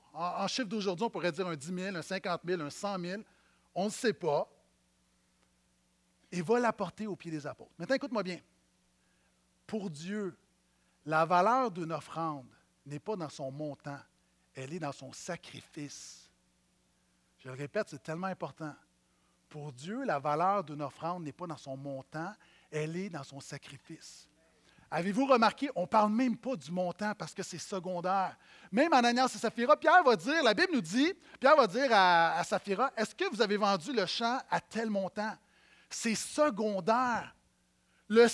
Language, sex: French, male